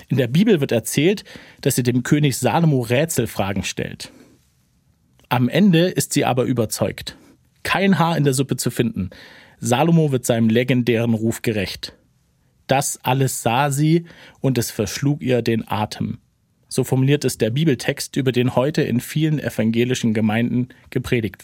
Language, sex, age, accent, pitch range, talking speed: German, male, 40-59, German, 120-150 Hz, 150 wpm